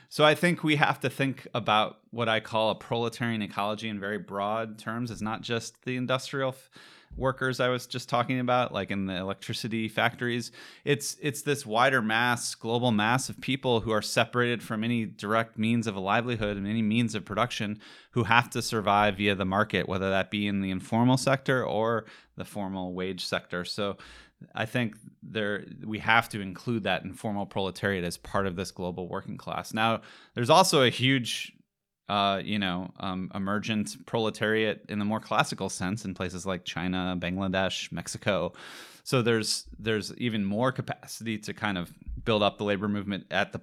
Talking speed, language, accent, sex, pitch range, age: 185 wpm, Danish, American, male, 100-120 Hz, 30-49